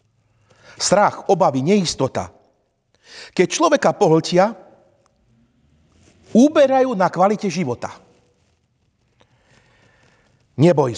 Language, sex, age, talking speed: Slovak, male, 50-69, 60 wpm